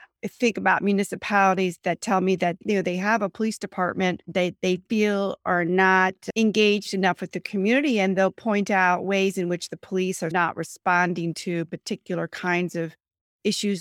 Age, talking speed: 40-59, 180 wpm